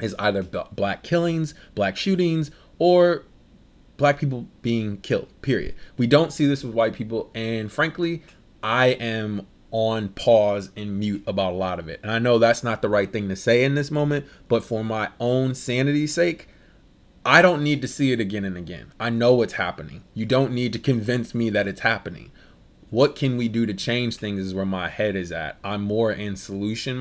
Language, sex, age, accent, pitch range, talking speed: English, male, 20-39, American, 100-125 Hz, 200 wpm